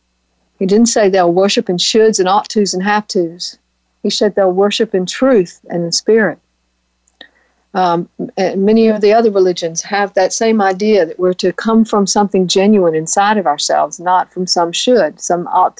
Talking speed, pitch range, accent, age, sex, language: 185 wpm, 170-210 Hz, American, 50-69, female, English